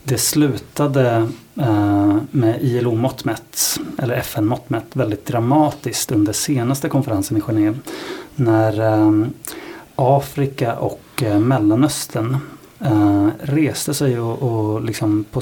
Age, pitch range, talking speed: 30-49, 105-140 Hz, 95 wpm